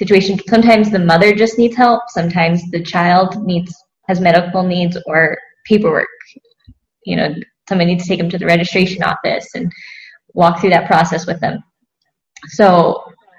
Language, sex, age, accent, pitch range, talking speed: English, female, 10-29, American, 175-215 Hz, 150 wpm